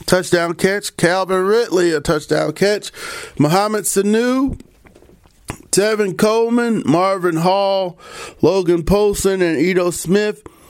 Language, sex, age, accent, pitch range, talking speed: English, male, 40-59, American, 180-215 Hz, 100 wpm